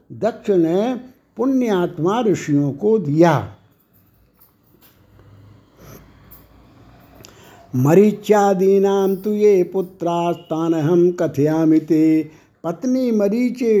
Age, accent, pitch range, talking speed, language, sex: 60-79, native, 160-205 Hz, 60 wpm, Hindi, male